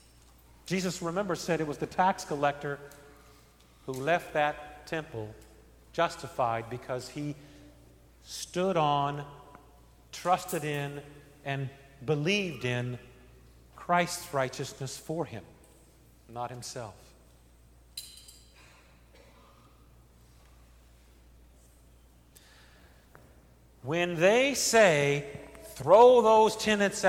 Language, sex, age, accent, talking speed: English, male, 50-69, American, 75 wpm